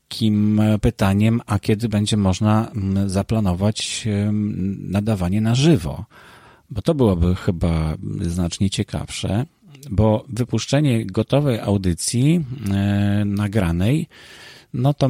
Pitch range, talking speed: 90-115 Hz, 95 wpm